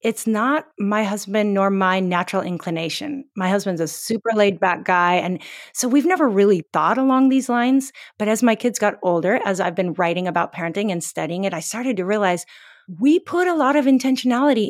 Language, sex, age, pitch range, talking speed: English, female, 40-59, 190-265 Hz, 200 wpm